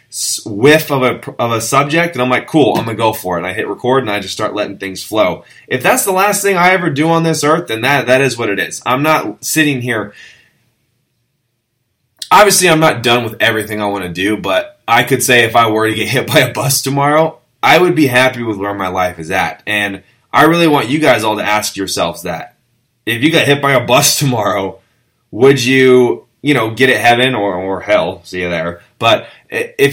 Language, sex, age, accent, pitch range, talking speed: English, male, 20-39, American, 100-135 Hz, 235 wpm